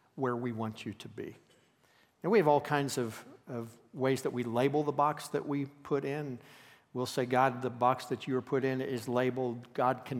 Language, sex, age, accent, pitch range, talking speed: English, male, 50-69, American, 125-150 Hz, 220 wpm